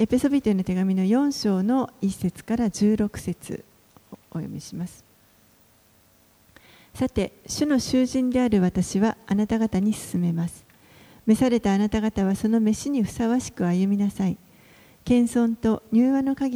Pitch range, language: 185-235 Hz, Japanese